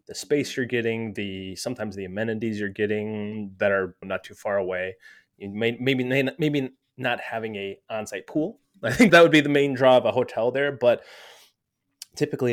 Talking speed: 195 wpm